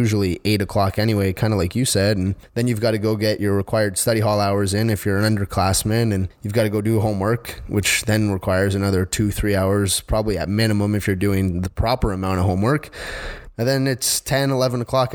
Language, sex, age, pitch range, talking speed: English, male, 10-29, 95-115 Hz, 225 wpm